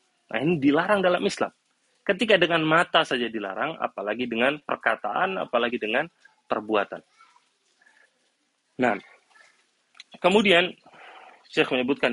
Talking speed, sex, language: 105 wpm, male, Indonesian